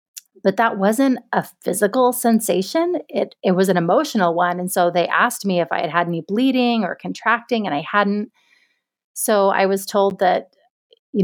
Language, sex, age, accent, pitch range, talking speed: English, female, 30-49, American, 180-210 Hz, 180 wpm